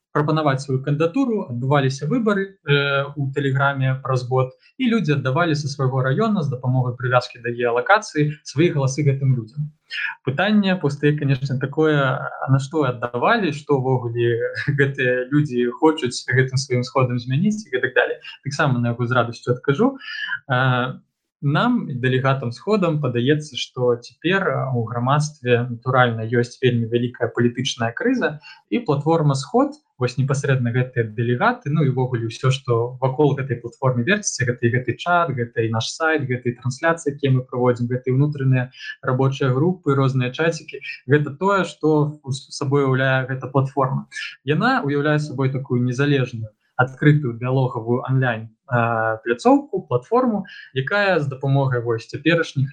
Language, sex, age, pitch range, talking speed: Russian, male, 20-39, 125-150 Hz, 140 wpm